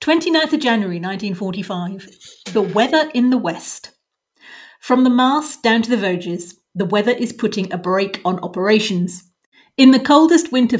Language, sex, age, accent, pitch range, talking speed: English, female, 40-59, British, 185-235 Hz, 155 wpm